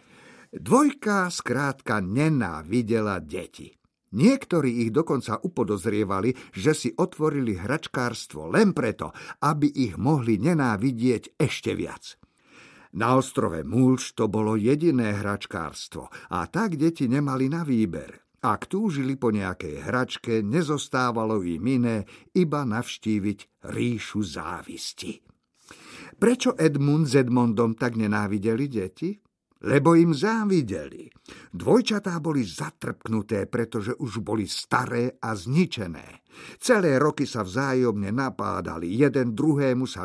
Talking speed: 110 wpm